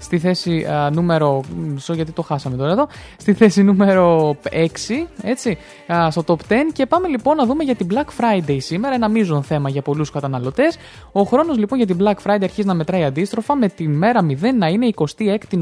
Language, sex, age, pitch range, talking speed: Greek, male, 20-39, 155-225 Hz, 200 wpm